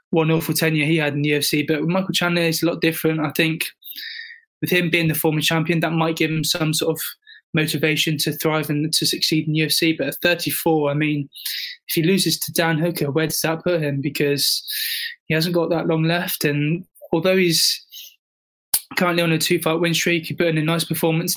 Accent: British